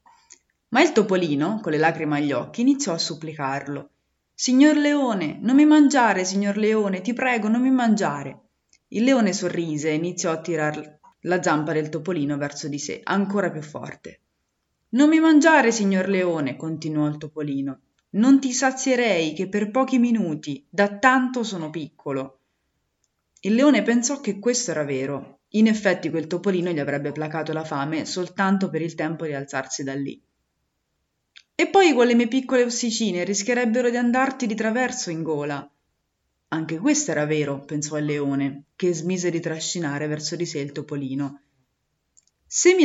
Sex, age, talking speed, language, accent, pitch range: female, 20-39, 160 wpm, Italian, native, 150-225 Hz